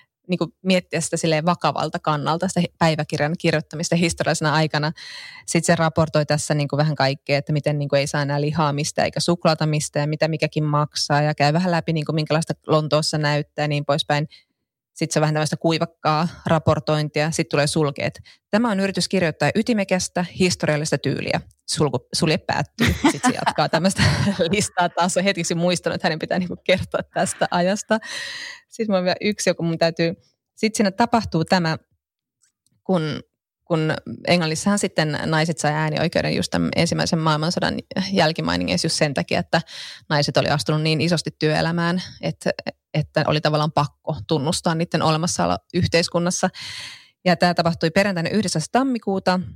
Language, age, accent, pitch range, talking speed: Finnish, 20-39, native, 150-180 Hz, 145 wpm